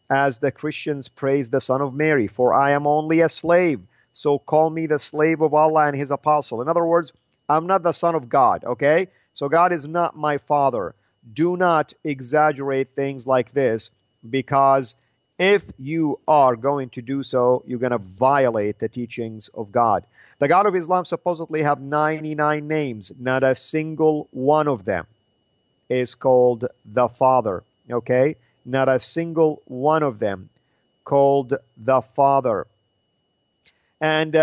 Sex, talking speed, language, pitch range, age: male, 160 wpm, English, 130-160 Hz, 40-59